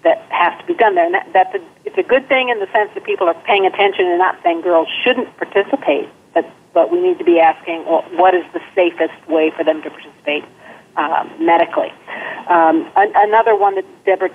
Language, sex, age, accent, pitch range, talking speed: English, female, 50-69, American, 165-235 Hz, 215 wpm